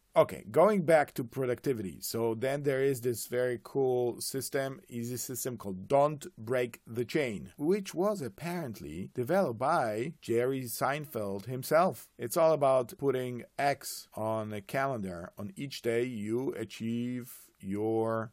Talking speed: 140 wpm